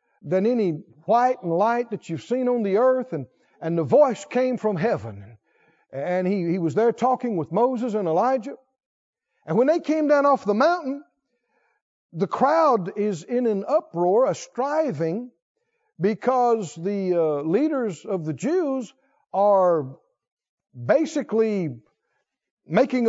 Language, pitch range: English, 210-310 Hz